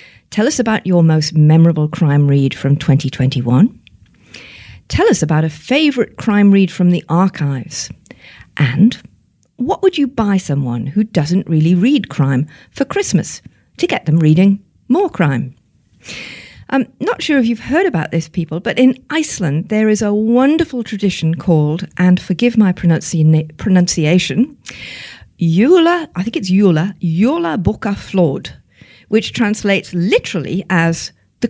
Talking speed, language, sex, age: 145 wpm, English, female, 50-69